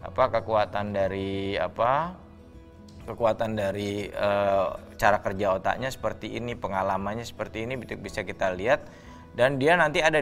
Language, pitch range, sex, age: Indonesian, 100-125 Hz, male, 20-39